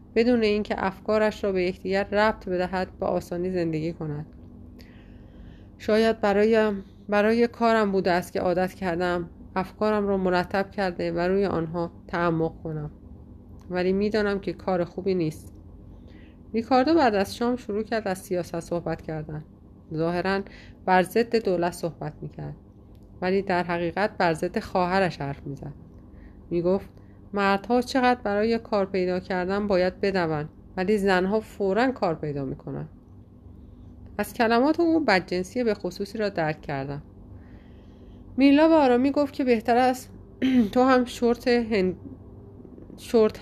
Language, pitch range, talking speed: Persian, 155-220 Hz, 130 wpm